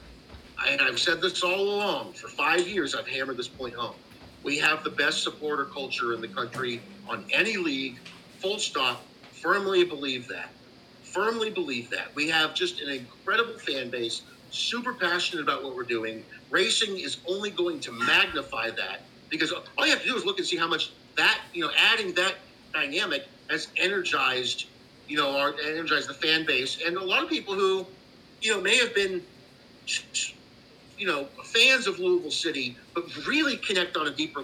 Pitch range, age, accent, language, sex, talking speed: 135-205 Hz, 50-69, American, English, male, 185 wpm